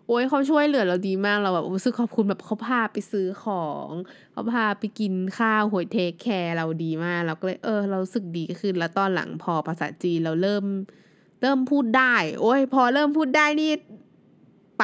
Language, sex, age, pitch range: Thai, female, 20-39, 175-235 Hz